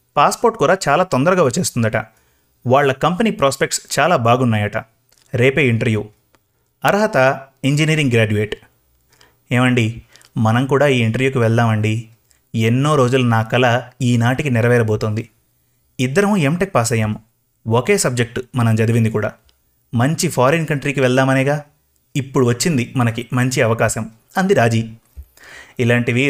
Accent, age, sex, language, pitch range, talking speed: native, 30-49, male, Telugu, 115-145 Hz, 110 wpm